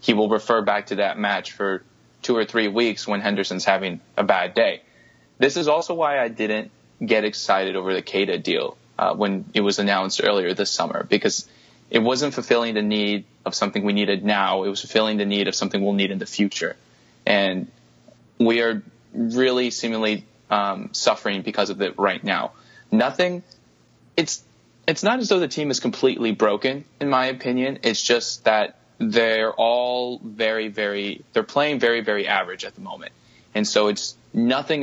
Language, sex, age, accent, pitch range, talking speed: English, male, 20-39, American, 105-120 Hz, 185 wpm